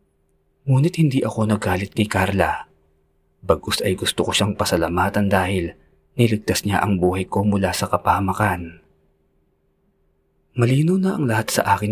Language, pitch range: Filipino, 80-105 Hz